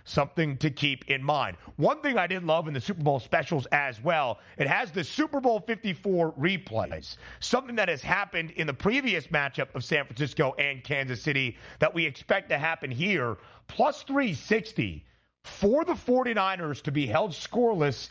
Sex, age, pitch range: male, 30-49, 140-195 Hz